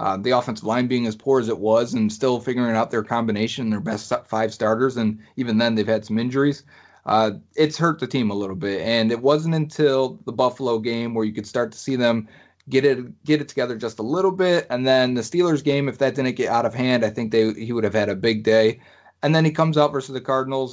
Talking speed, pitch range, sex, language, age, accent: 255 wpm, 110-135 Hz, male, English, 30-49, American